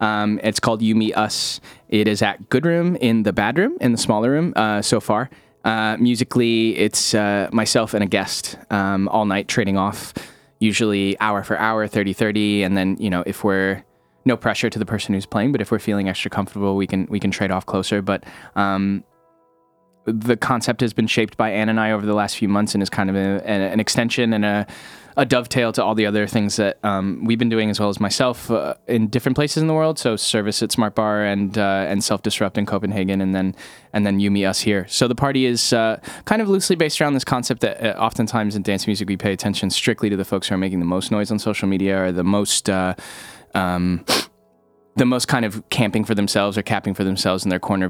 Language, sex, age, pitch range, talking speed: English, male, 10-29, 95-115 Hz, 235 wpm